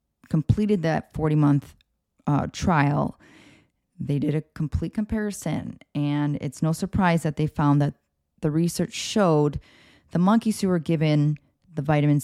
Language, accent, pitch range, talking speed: English, American, 145-175 Hz, 130 wpm